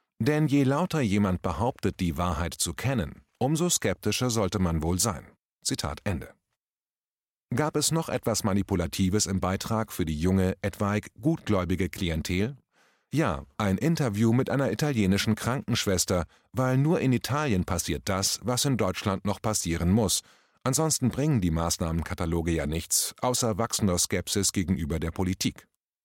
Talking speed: 140 wpm